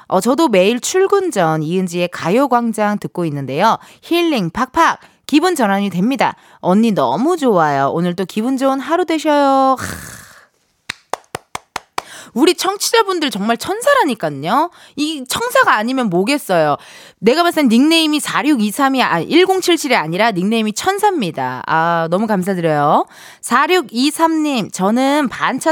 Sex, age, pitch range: female, 20-39, 195-295 Hz